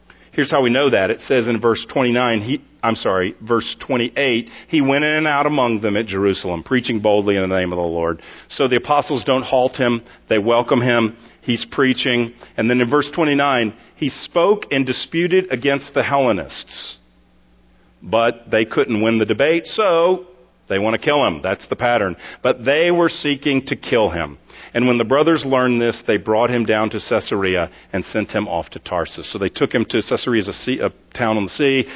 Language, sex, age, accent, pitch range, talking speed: English, male, 40-59, American, 110-135 Hz, 205 wpm